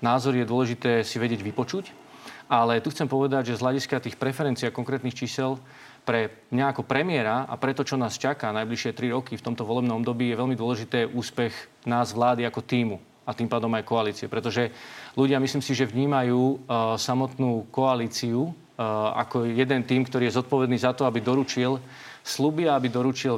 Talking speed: 180 wpm